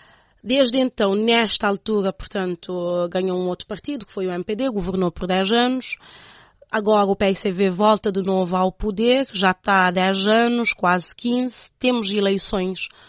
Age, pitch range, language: 20-39, 190-220 Hz, Chinese